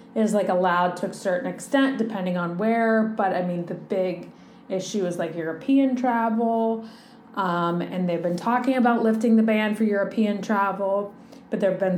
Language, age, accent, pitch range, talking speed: English, 30-49, American, 190-235 Hz, 175 wpm